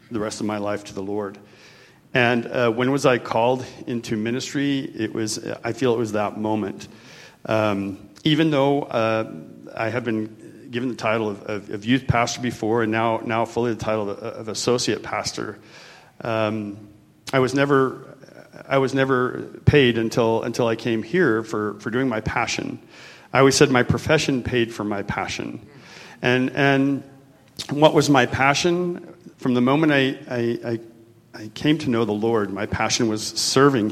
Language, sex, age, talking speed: English, male, 40-59, 175 wpm